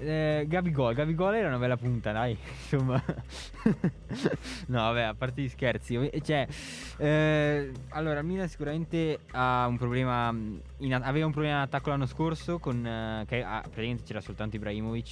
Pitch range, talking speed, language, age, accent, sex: 110-145 Hz, 155 wpm, Italian, 20-39, native, male